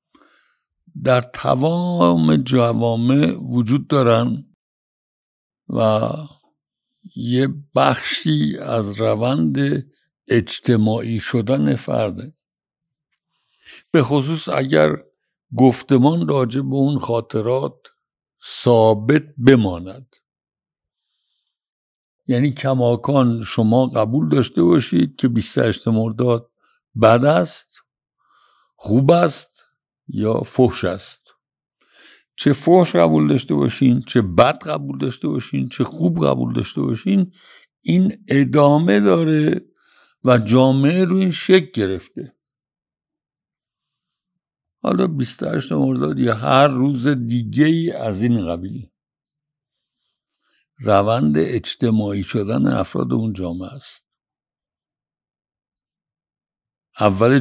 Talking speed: 85 wpm